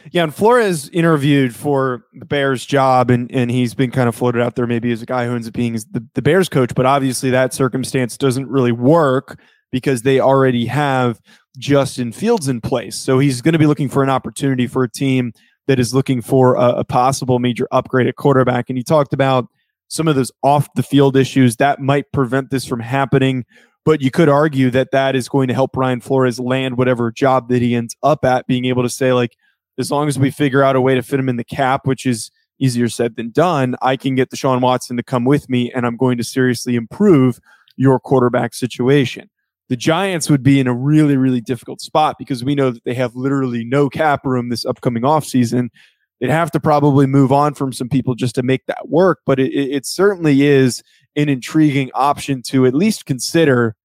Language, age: English, 20-39